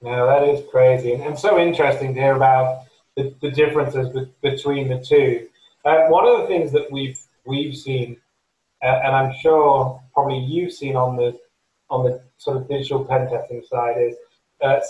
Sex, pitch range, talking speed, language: male, 130-155 Hz, 185 wpm, English